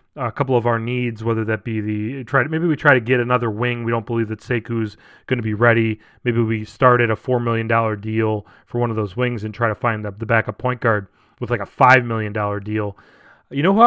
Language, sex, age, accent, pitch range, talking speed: English, male, 30-49, American, 115-140 Hz, 255 wpm